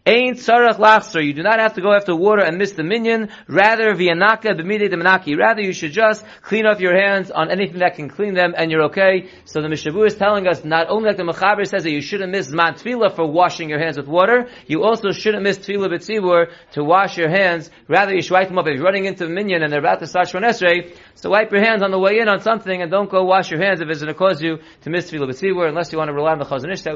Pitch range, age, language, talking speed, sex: 175-215 Hz, 30-49, English, 275 wpm, male